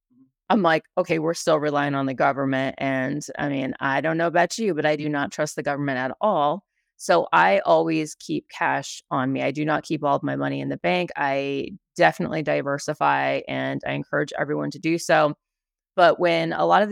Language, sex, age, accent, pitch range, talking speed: English, female, 30-49, American, 140-170 Hz, 210 wpm